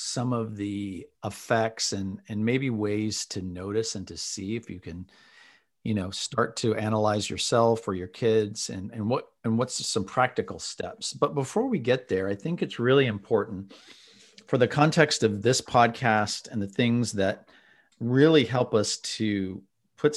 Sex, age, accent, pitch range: male, 40-59, American, 100-125 Hz